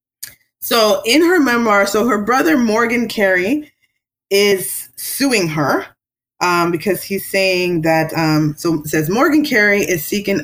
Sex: female